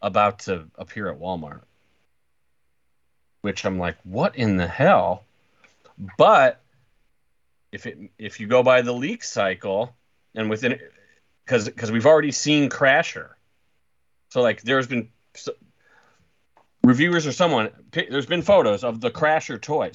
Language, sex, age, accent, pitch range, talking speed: English, male, 30-49, American, 95-125 Hz, 135 wpm